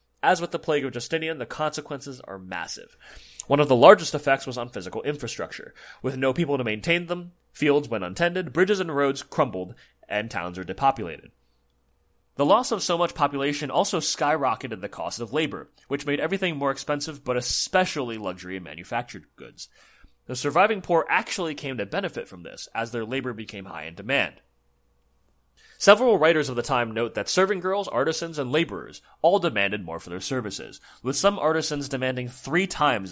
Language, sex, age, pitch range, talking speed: English, male, 30-49, 110-165 Hz, 180 wpm